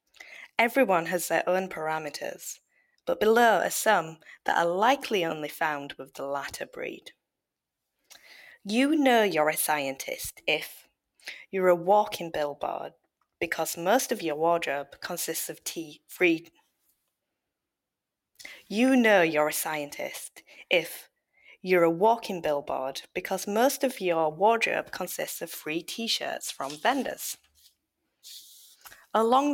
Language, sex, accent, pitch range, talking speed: English, female, British, 160-240 Hz, 120 wpm